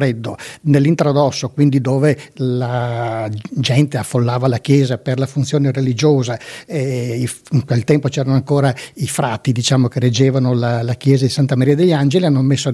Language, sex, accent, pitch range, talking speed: Italian, male, native, 130-150 Hz, 160 wpm